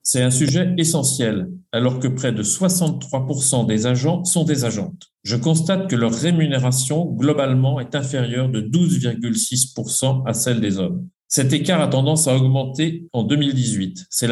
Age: 50-69